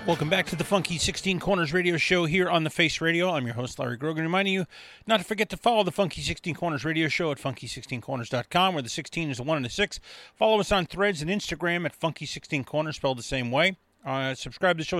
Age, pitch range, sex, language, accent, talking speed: 30-49, 140-190 Hz, male, English, American, 240 wpm